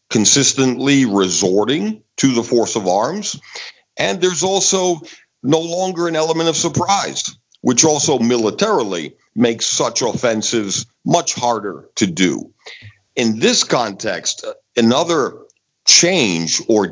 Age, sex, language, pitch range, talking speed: 50-69, male, English, 110-165 Hz, 115 wpm